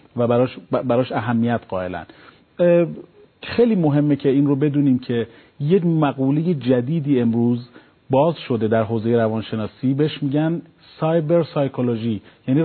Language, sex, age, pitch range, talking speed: Persian, male, 40-59, 125-165 Hz, 130 wpm